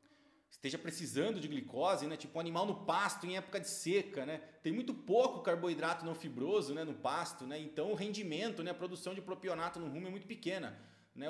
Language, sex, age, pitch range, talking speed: Portuguese, male, 30-49, 155-200 Hz, 210 wpm